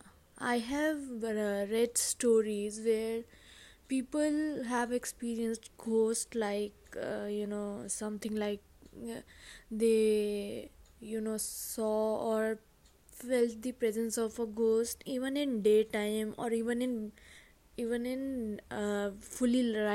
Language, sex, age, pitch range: English, female, 20-39, 215-240 Hz